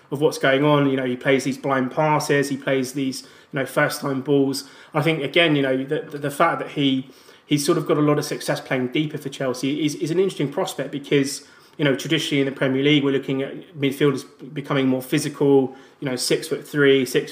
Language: English